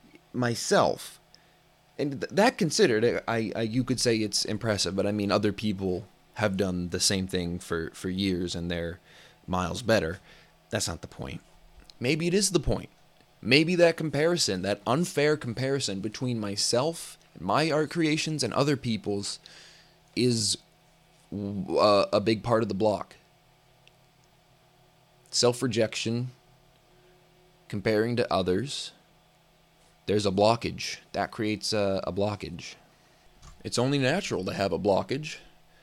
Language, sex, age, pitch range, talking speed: English, male, 20-39, 105-135 Hz, 130 wpm